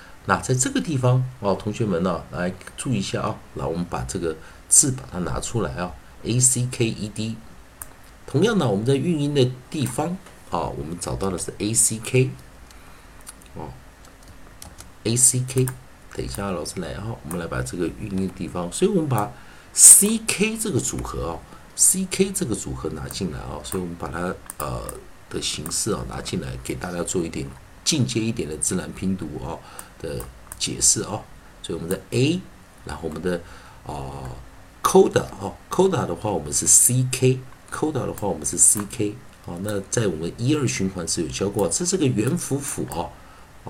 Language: Chinese